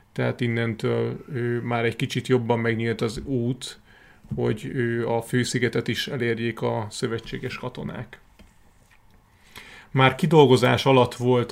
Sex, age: male, 30-49